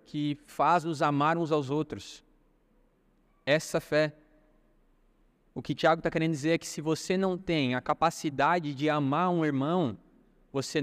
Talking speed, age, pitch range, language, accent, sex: 150 wpm, 20-39, 140-165 Hz, Portuguese, Brazilian, male